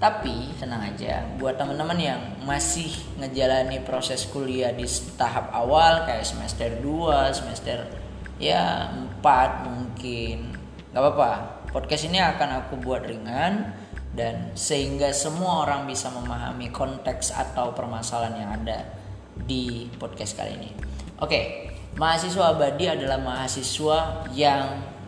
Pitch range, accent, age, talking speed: 110-145 Hz, native, 20-39, 120 wpm